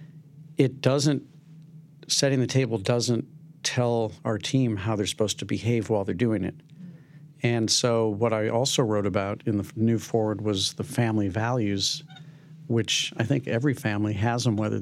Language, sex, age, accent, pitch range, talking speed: English, male, 50-69, American, 110-150 Hz, 160 wpm